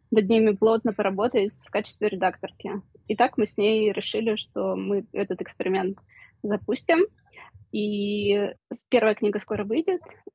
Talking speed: 135 wpm